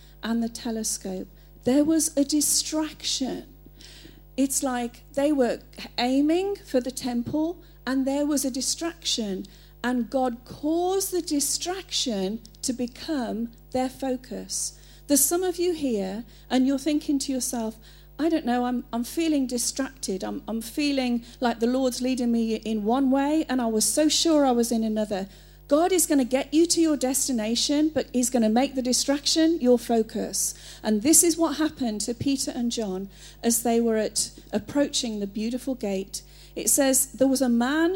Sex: female